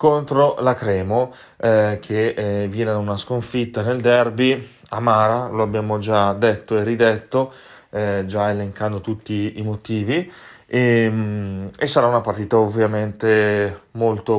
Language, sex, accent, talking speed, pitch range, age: Italian, male, native, 135 wpm, 105-120 Hz, 30-49